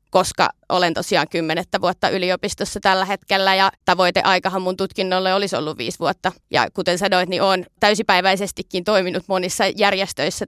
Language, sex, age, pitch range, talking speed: Finnish, female, 30-49, 170-195 Hz, 145 wpm